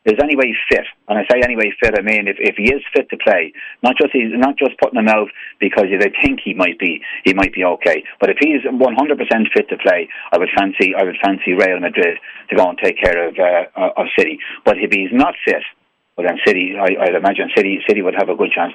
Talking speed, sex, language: 255 wpm, male, English